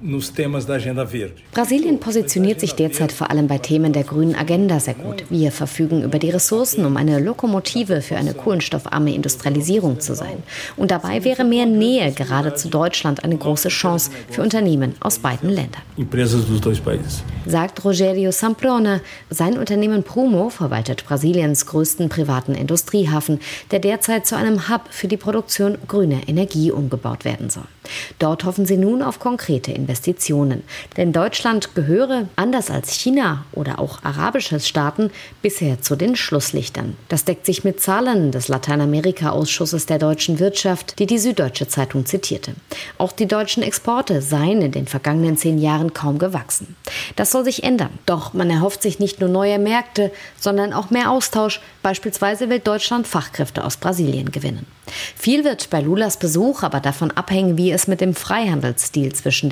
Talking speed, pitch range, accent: 155 wpm, 145-200 Hz, German